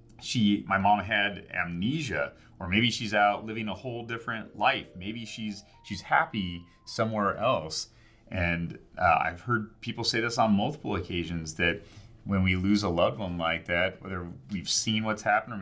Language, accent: English, American